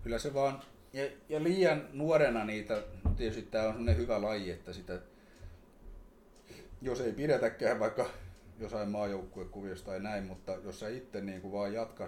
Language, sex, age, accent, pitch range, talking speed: Finnish, male, 30-49, native, 90-115 Hz, 155 wpm